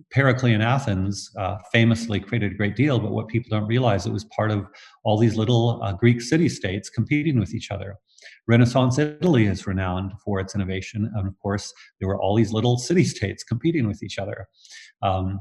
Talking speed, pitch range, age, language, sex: 185 wpm, 100-120 Hz, 40-59, English, male